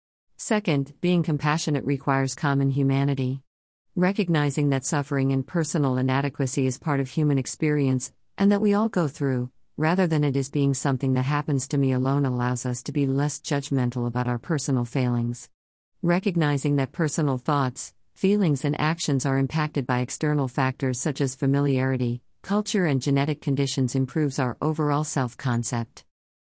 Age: 50-69